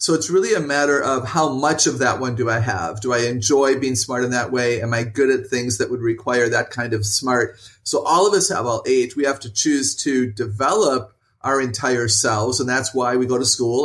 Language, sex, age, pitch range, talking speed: English, male, 30-49, 120-145 Hz, 245 wpm